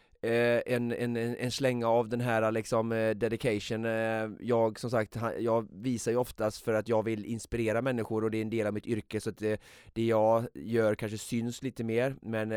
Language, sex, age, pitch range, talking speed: Swedish, male, 20-39, 110-120 Hz, 200 wpm